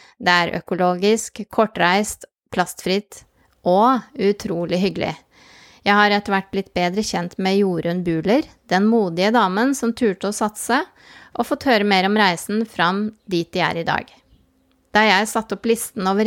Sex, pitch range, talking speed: female, 180-220 Hz, 155 wpm